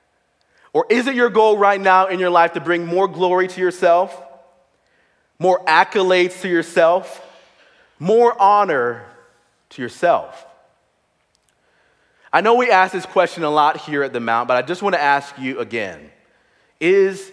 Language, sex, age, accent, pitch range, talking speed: English, male, 30-49, American, 160-225 Hz, 155 wpm